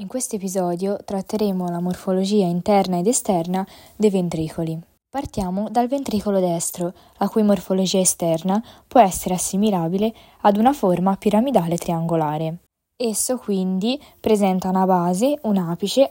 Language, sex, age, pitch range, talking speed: Italian, female, 20-39, 180-225 Hz, 125 wpm